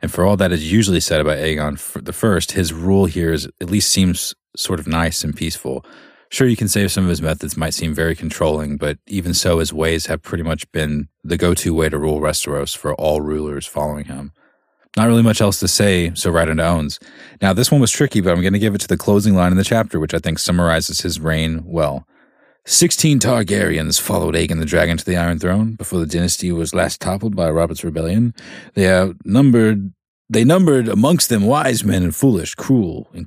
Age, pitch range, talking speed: 30-49, 80-105 Hz, 220 wpm